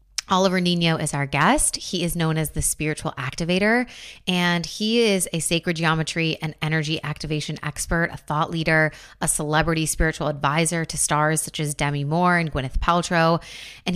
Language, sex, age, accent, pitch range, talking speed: English, female, 20-39, American, 155-185 Hz, 170 wpm